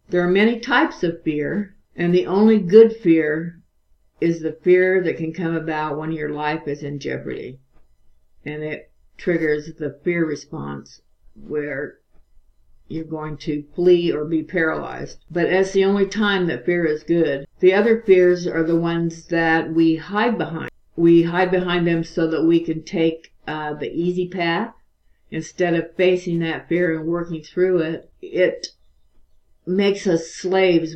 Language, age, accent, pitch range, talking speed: English, 60-79, American, 150-175 Hz, 160 wpm